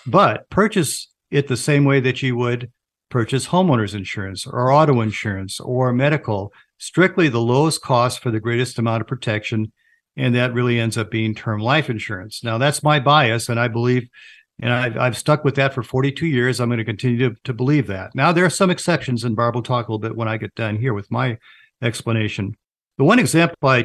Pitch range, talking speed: 115-140 Hz, 210 wpm